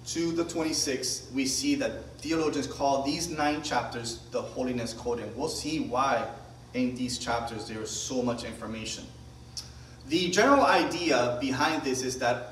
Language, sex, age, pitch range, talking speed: English, male, 30-49, 120-175 Hz, 160 wpm